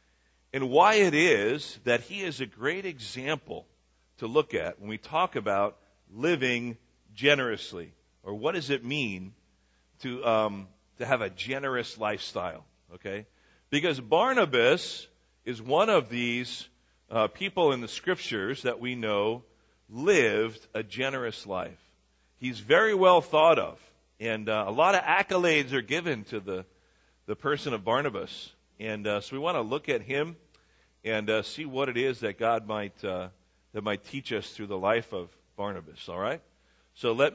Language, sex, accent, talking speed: English, male, American, 160 wpm